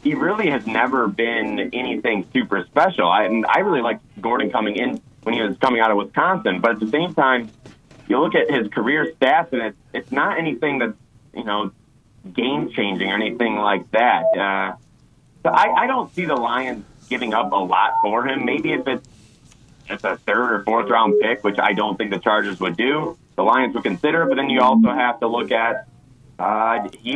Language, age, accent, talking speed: English, 30-49, American, 210 wpm